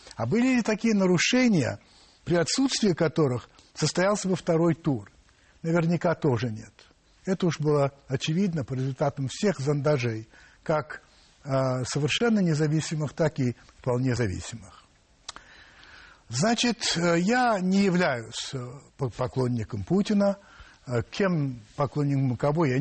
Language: Russian